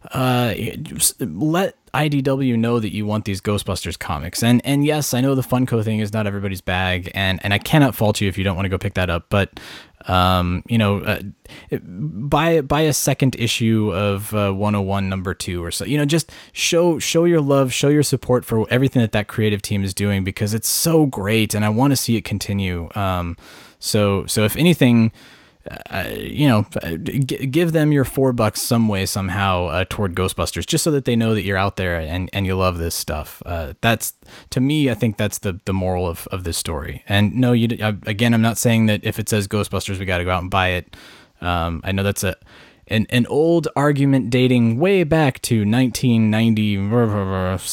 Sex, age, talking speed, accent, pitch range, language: male, 20-39, 205 wpm, American, 95-130 Hz, English